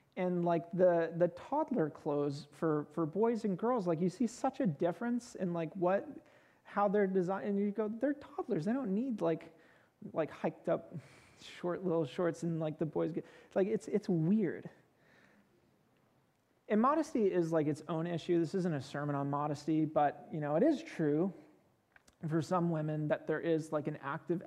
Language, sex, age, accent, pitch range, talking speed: English, male, 30-49, American, 150-180 Hz, 185 wpm